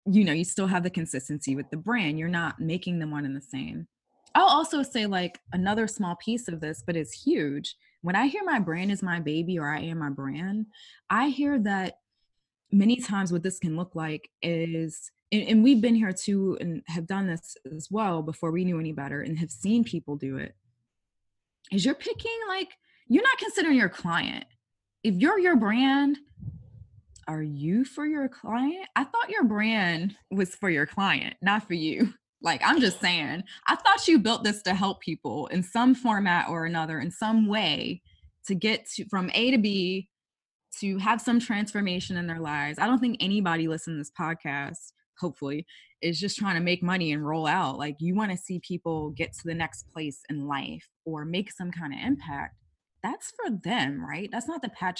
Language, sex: English, female